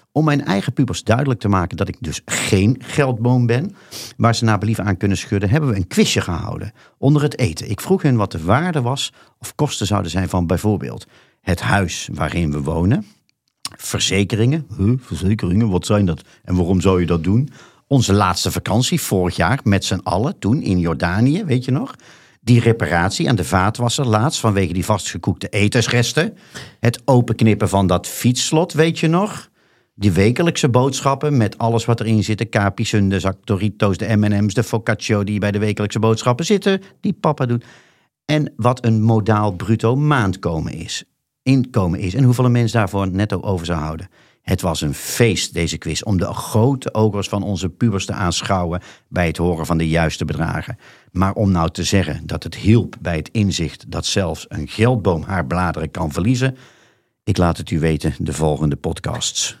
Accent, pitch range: Dutch, 95-125 Hz